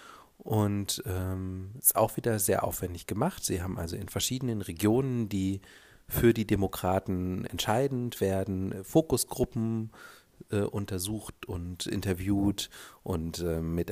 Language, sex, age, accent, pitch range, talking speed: German, male, 40-59, German, 95-120 Hz, 120 wpm